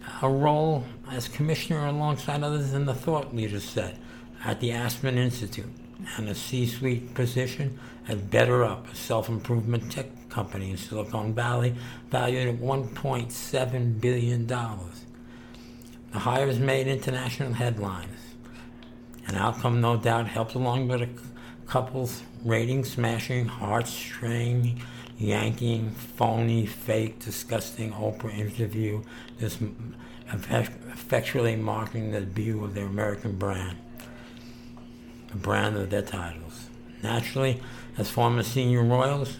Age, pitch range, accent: 60-79, 110-125 Hz, American